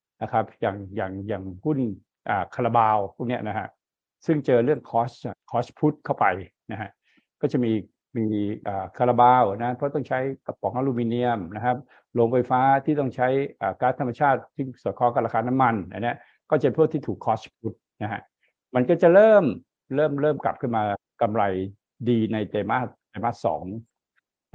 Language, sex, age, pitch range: Thai, male, 60-79, 110-140 Hz